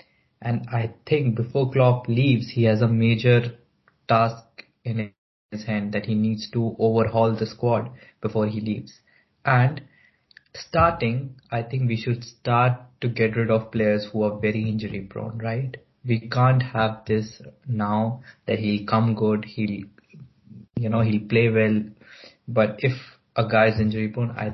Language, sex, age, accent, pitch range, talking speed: English, male, 20-39, Indian, 110-125 Hz, 155 wpm